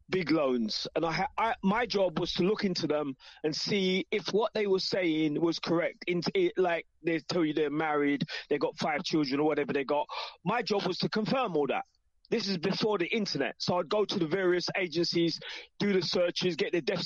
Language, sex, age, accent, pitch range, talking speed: English, male, 20-39, British, 170-215 Hz, 220 wpm